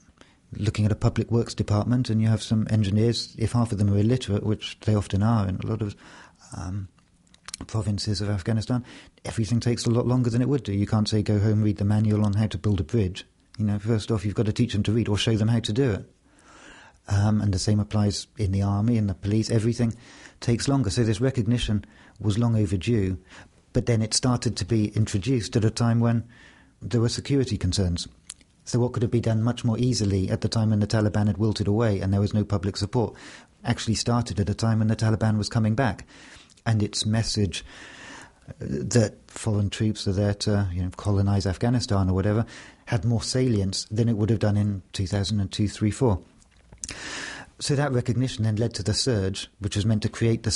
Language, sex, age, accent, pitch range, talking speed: English, male, 50-69, British, 100-115 Hz, 220 wpm